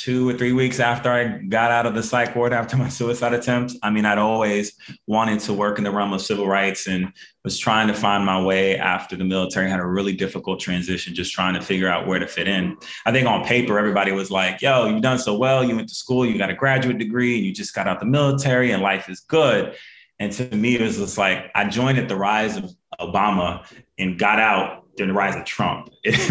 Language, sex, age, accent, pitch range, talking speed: English, male, 20-39, American, 95-120 Hz, 245 wpm